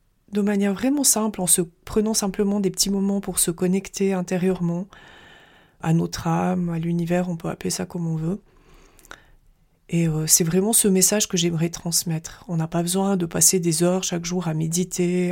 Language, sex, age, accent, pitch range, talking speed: French, female, 30-49, French, 170-200 Hz, 190 wpm